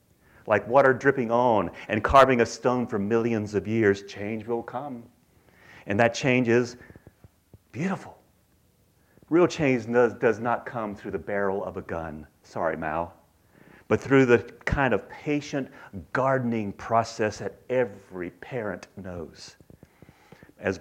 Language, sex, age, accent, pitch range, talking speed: English, male, 40-59, American, 100-140 Hz, 135 wpm